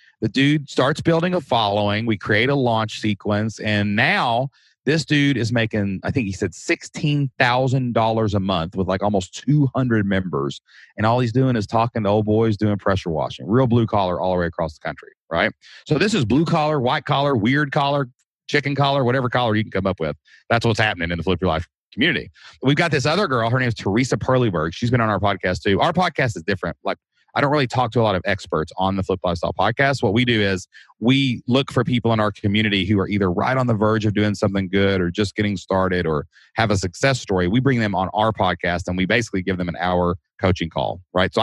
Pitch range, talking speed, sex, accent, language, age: 95-130 Hz, 235 wpm, male, American, English, 30-49